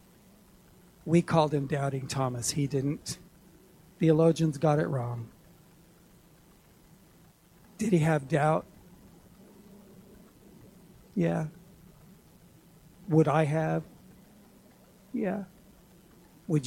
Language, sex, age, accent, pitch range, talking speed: English, male, 60-79, American, 145-185 Hz, 75 wpm